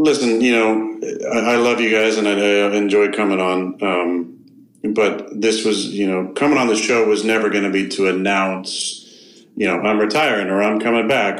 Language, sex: English, male